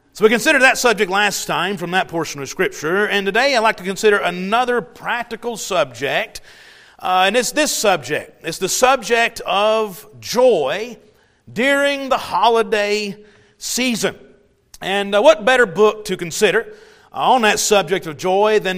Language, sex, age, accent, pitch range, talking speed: English, male, 40-59, American, 185-230 Hz, 150 wpm